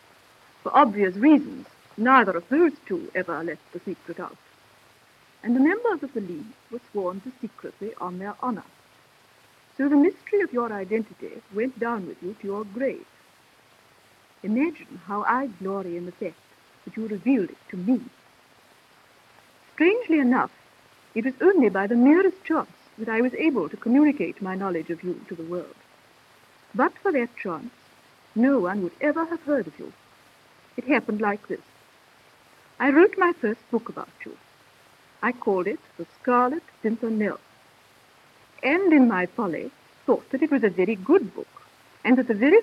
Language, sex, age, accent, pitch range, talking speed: English, female, 60-79, Indian, 195-280 Hz, 165 wpm